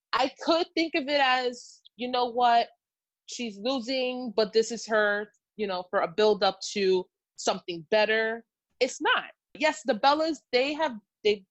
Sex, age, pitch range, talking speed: female, 20-39, 210-265 Hz, 165 wpm